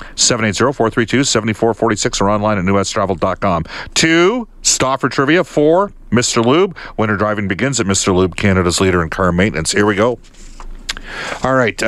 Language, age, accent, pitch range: English, 50-69, American, 100-135 Hz